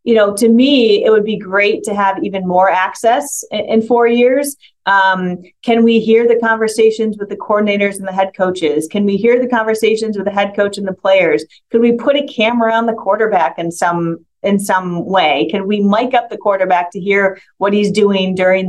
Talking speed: 215 wpm